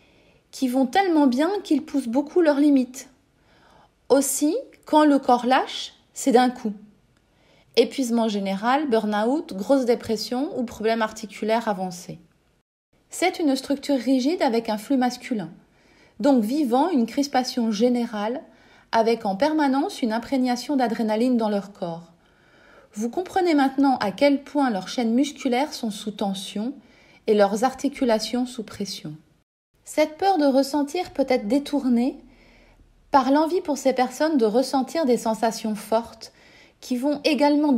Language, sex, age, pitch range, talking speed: French, female, 30-49, 225-280 Hz, 135 wpm